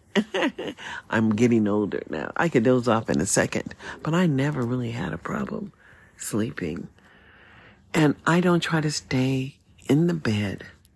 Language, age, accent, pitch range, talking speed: English, 50-69, American, 100-145 Hz, 155 wpm